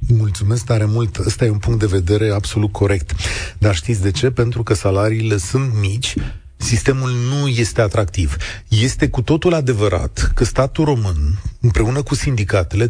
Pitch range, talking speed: 110-150 Hz, 160 wpm